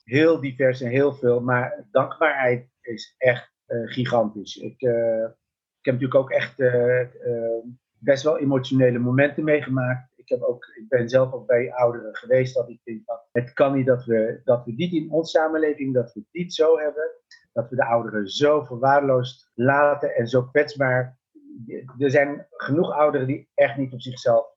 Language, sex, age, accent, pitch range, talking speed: Dutch, male, 50-69, Dutch, 120-145 Hz, 180 wpm